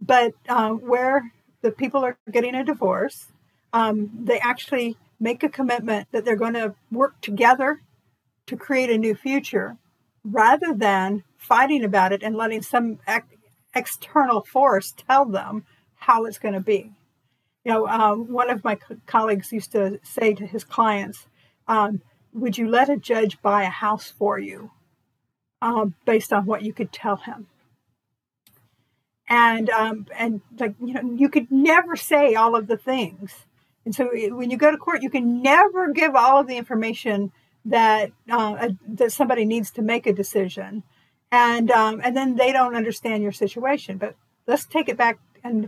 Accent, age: American, 50-69